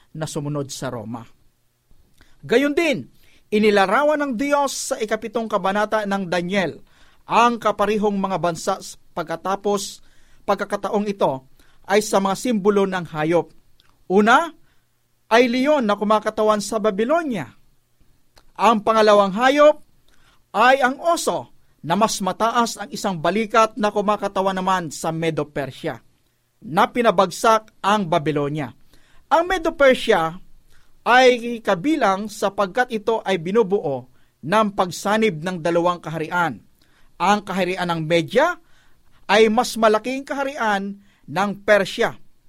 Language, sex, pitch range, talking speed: Filipino, male, 180-245 Hz, 110 wpm